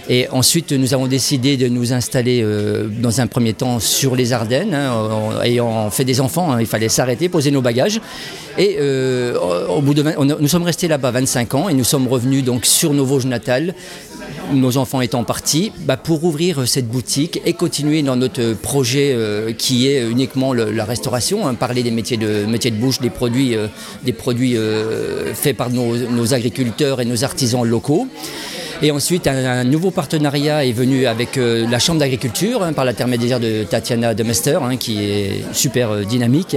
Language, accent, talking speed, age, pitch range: French, French, 195 wpm, 40-59, 120-145 Hz